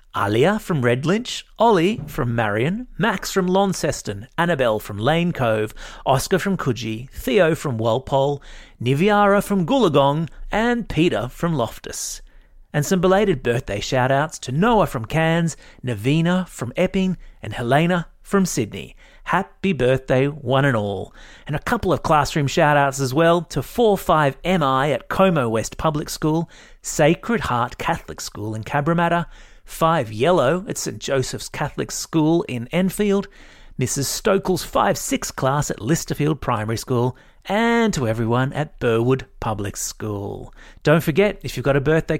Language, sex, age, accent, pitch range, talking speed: English, male, 30-49, Australian, 125-175 Hz, 140 wpm